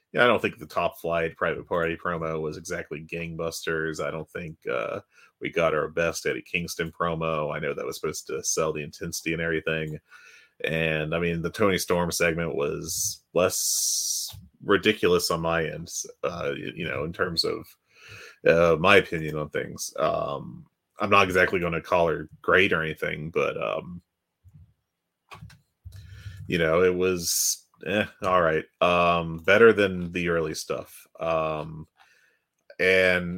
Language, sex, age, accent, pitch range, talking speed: English, male, 30-49, American, 80-95 Hz, 155 wpm